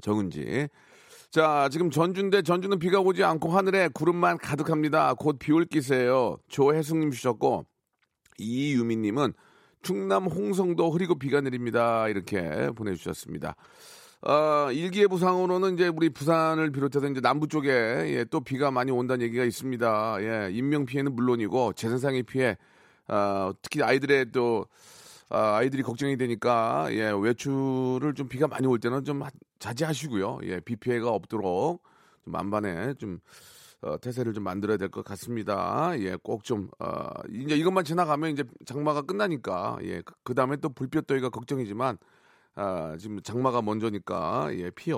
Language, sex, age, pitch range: Korean, male, 40-59, 120-165 Hz